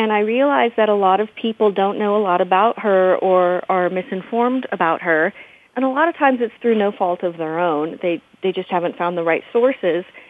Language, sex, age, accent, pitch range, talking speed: English, female, 30-49, American, 180-215 Hz, 225 wpm